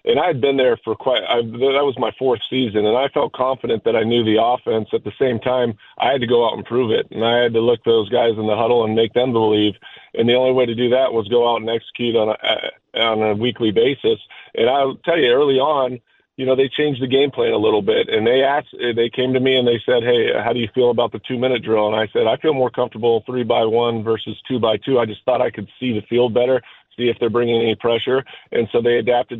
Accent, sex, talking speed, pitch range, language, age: American, male, 280 wpm, 115-130 Hz, English, 40-59